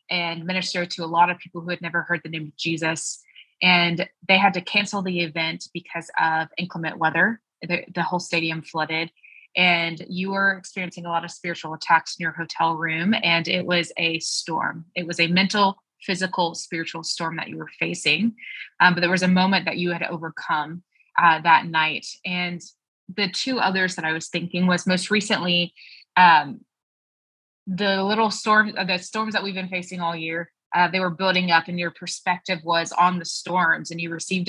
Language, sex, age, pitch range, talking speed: English, female, 20-39, 165-190 Hz, 195 wpm